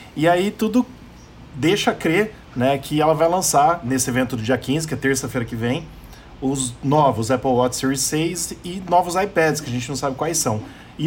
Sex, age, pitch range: male, 20-39, 130-155 Hz